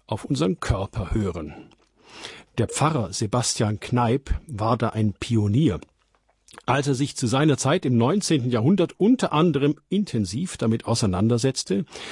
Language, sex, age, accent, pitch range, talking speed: German, male, 50-69, German, 110-145 Hz, 130 wpm